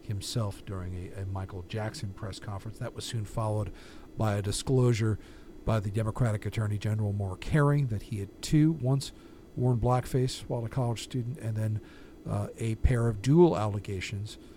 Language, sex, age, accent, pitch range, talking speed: English, male, 50-69, American, 100-130 Hz, 170 wpm